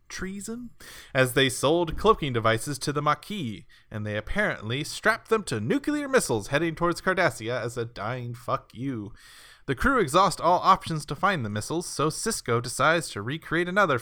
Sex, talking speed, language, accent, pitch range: male, 170 wpm, English, American, 120-175 Hz